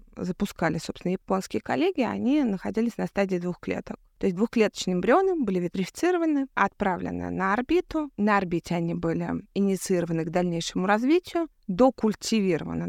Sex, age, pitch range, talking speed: female, 20-39, 175-220 Hz, 130 wpm